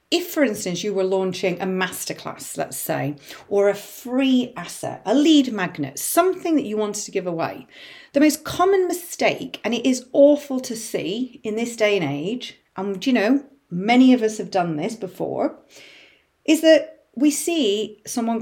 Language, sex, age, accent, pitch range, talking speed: English, female, 40-59, British, 190-285 Hz, 175 wpm